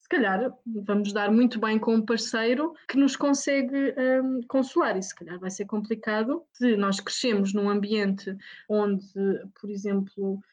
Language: Portuguese